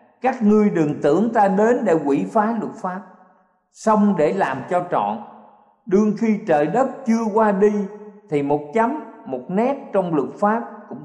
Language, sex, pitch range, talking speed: Vietnamese, male, 145-220 Hz, 175 wpm